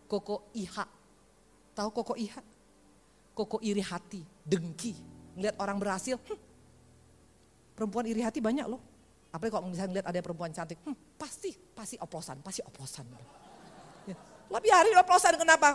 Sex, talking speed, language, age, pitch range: female, 135 wpm, Indonesian, 40-59, 205-330 Hz